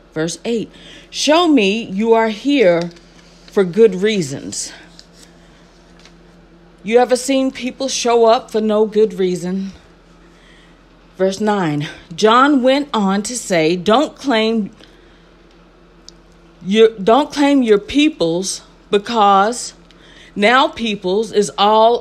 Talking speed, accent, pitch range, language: 105 wpm, American, 180-245 Hz, English